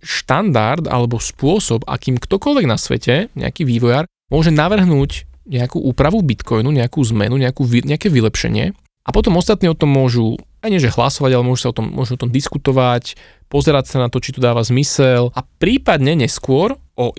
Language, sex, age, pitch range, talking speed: Slovak, male, 20-39, 125-155 Hz, 175 wpm